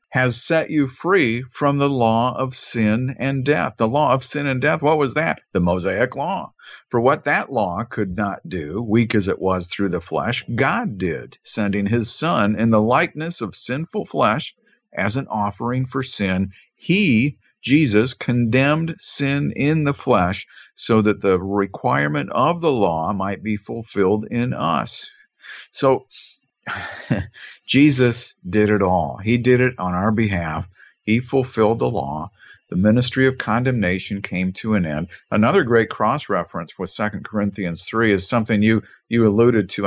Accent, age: American, 50-69